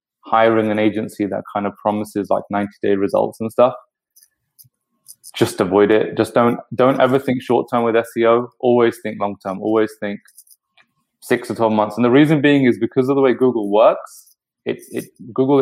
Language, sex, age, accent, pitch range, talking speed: English, male, 20-39, British, 105-125 Hz, 190 wpm